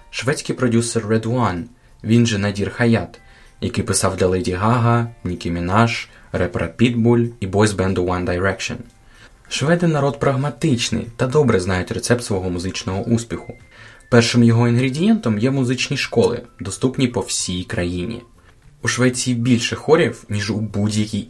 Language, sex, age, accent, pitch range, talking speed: Ukrainian, male, 20-39, native, 100-120 Hz, 140 wpm